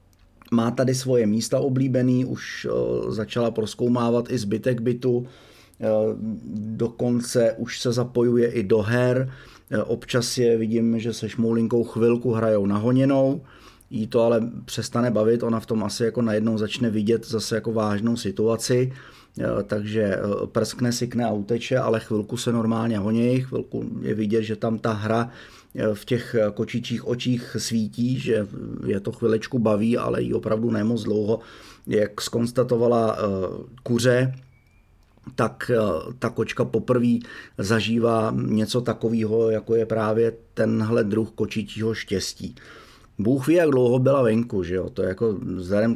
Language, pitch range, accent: Czech, 110-120 Hz, native